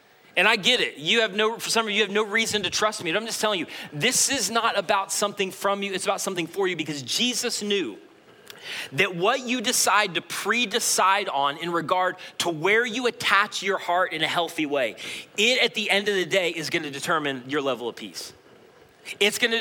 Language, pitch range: English, 170-215 Hz